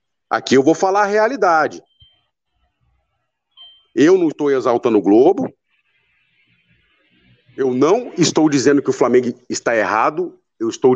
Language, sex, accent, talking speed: Portuguese, male, Brazilian, 125 wpm